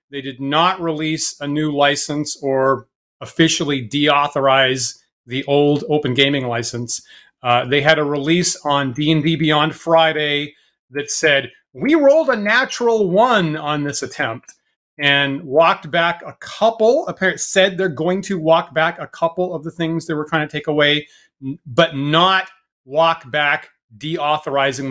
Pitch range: 140-185 Hz